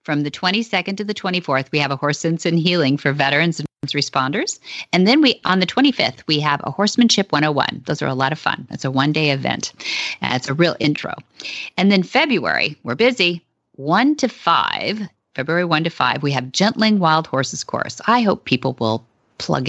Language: English